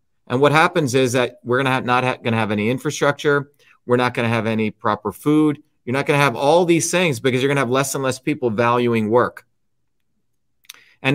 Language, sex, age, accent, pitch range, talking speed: English, male, 40-59, American, 120-155 Hz, 235 wpm